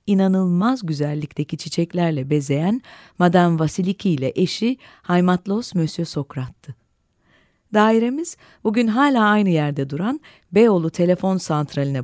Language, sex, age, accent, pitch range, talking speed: Turkish, female, 40-59, native, 155-220 Hz, 100 wpm